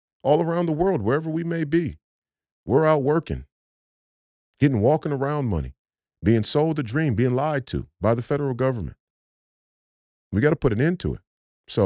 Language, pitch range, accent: English, 90-120 Hz, American